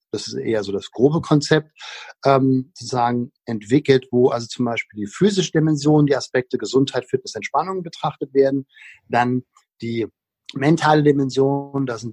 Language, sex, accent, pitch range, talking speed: German, male, German, 120-155 Hz, 150 wpm